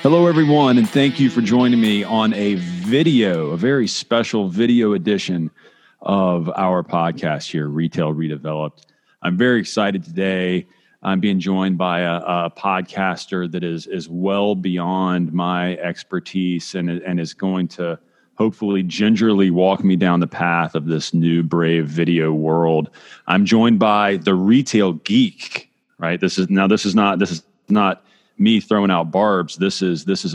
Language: English